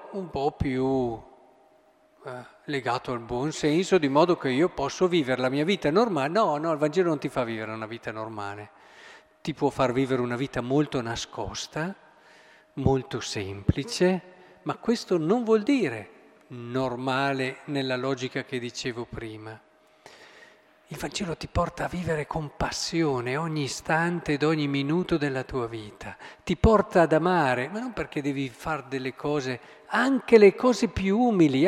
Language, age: Italian, 50-69